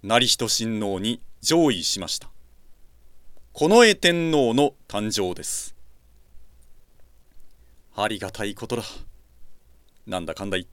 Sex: male